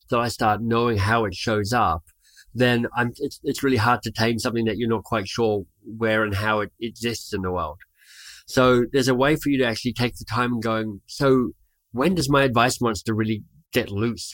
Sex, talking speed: male, 220 wpm